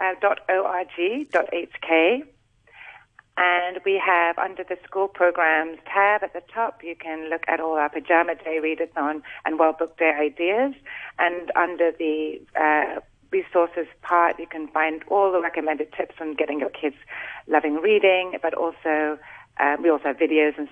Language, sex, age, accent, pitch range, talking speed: English, female, 40-59, British, 155-180 Hz, 160 wpm